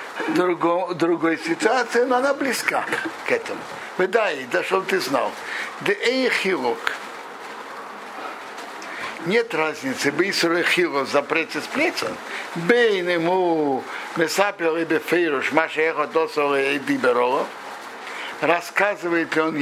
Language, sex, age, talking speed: Russian, male, 60-79, 115 wpm